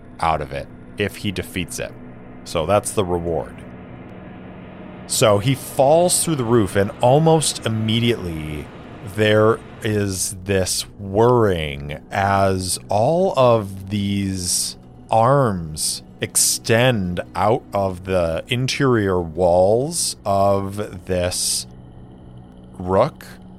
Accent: American